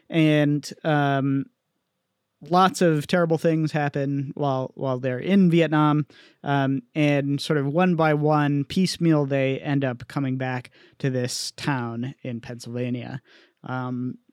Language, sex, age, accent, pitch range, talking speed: English, male, 30-49, American, 130-165 Hz, 130 wpm